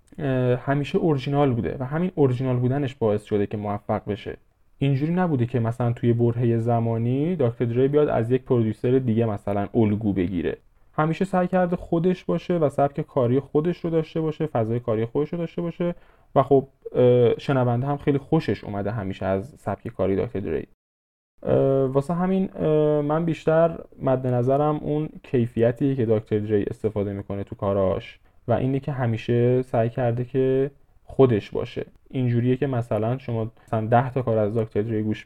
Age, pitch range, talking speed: 10-29, 110-145 Hz, 165 wpm